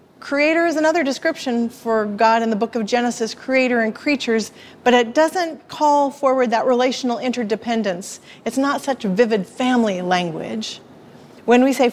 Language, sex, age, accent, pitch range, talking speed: English, female, 40-59, American, 215-255 Hz, 155 wpm